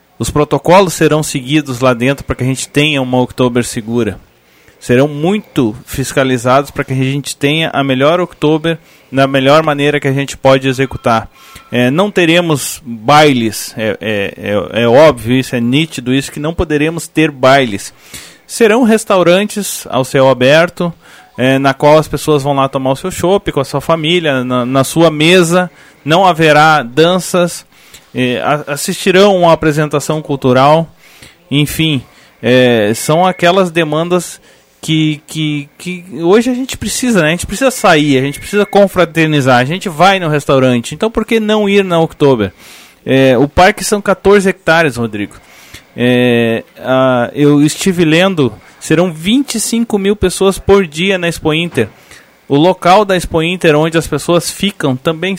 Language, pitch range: Portuguese, 135-175 Hz